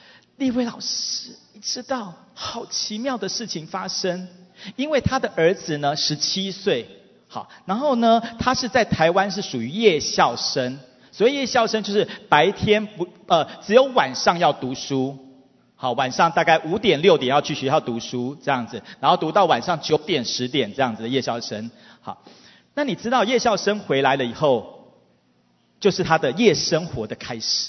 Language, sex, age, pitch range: English, male, 40-59, 140-220 Hz